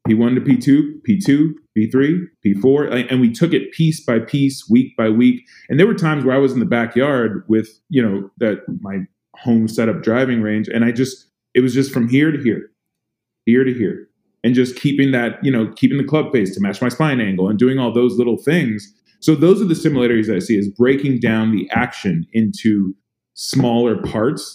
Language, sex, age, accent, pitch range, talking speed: English, male, 30-49, American, 110-140 Hz, 210 wpm